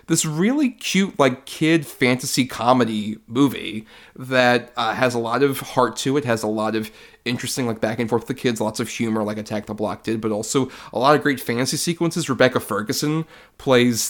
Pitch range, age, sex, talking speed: 115-145 Hz, 30-49, male, 205 wpm